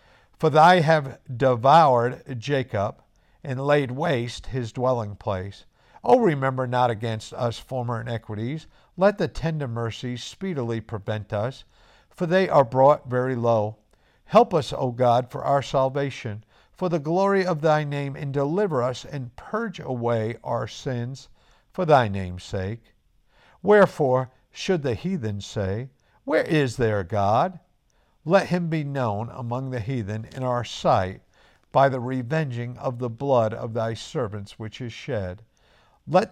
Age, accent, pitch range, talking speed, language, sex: 50-69, American, 115-150 Hz, 145 wpm, English, male